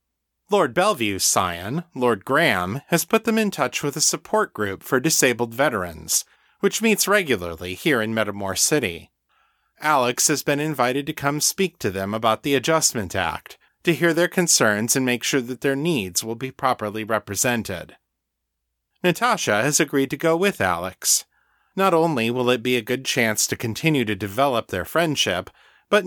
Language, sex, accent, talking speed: English, male, American, 170 wpm